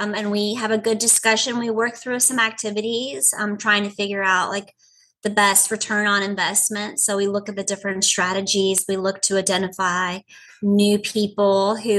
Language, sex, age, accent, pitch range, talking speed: English, female, 30-49, American, 190-220 Hz, 185 wpm